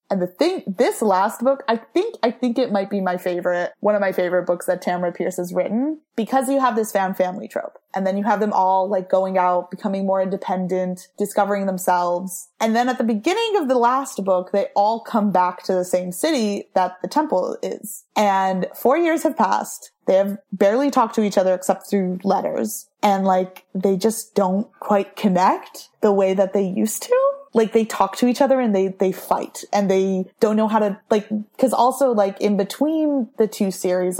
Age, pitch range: 20-39, 185-235 Hz